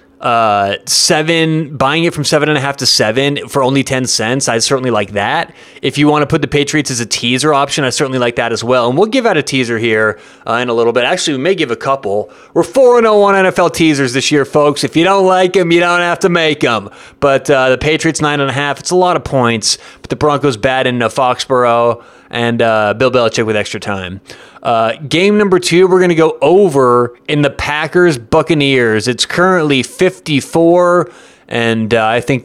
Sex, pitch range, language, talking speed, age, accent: male, 120-150 Hz, English, 225 wpm, 30-49, American